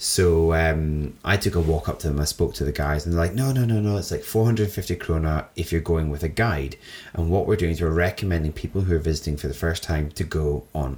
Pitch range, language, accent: 80-95 Hz, English, British